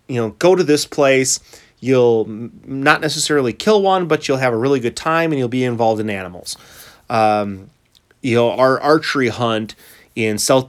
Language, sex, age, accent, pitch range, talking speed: English, male, 30-49, American, 105-130 Hz, 180 wpm